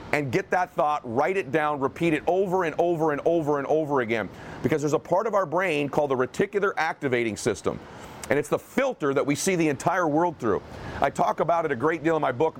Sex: male